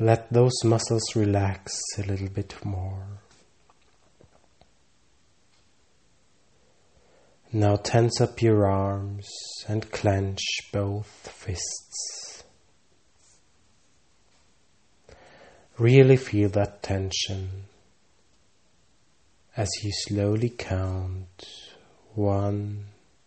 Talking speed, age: 65 wpm, 30-49